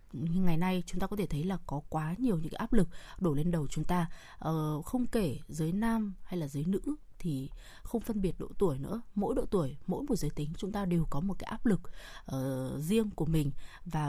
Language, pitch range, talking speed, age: Vietnamese, 160-215 Hz, 230 wpm, 20-39